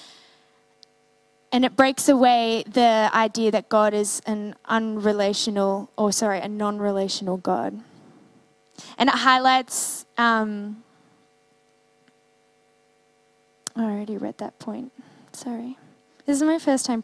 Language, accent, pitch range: English, Australian, 210-240 Hz